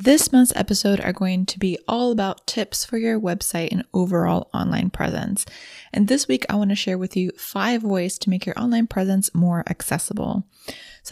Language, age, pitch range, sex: English, 20-39, 175-210 Hz, female